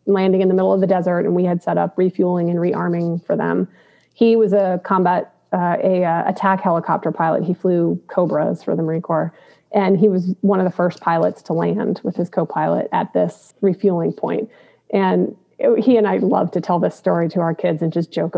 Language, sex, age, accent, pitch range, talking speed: English, female, 30-49, American, 180-215 Hz, 220 wpm